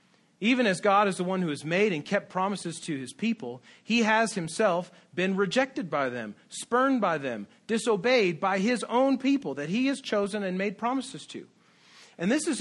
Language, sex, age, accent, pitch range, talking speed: English, male, 40-59, American, 155-215 Hz, 195 wpm